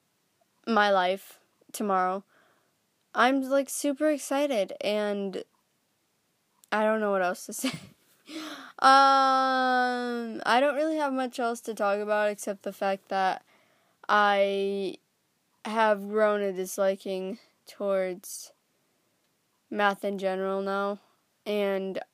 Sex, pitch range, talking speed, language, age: female, 195-245 Hz, 110 wpm, English, 20-39